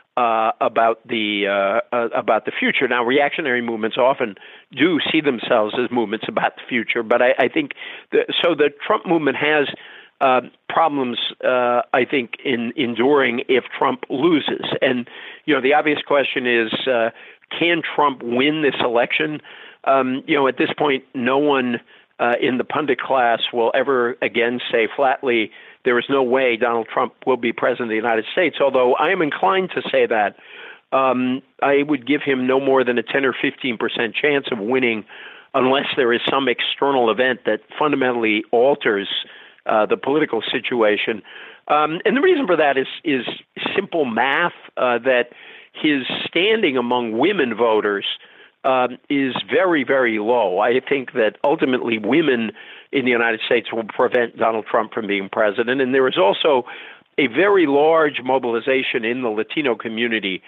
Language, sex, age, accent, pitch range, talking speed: English, male, 50-69, American, 115-145 Hz, 170 wpm